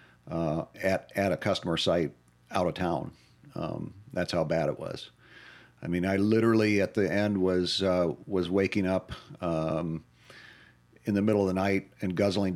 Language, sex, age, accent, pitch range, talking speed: English, male, 40-59, American, 85-100 Hz, 170 wpm